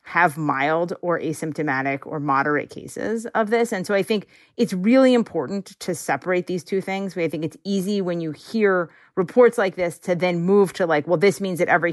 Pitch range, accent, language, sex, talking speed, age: 160-190 Hz, American, English, female, 205 wpm, 30-49